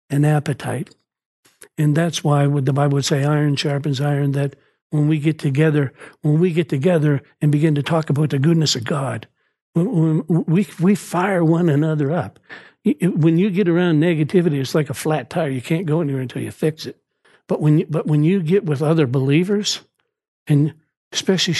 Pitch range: 145-175 Hz